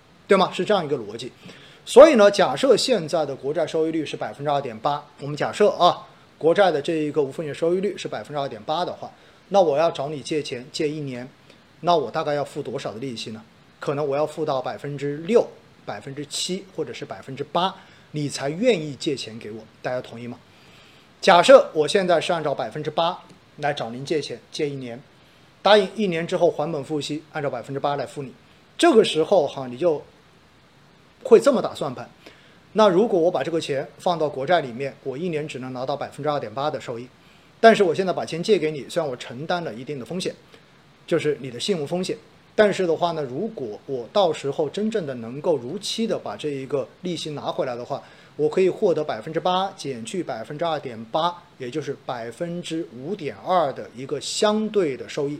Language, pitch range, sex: Chinese, 140-180 Hz, male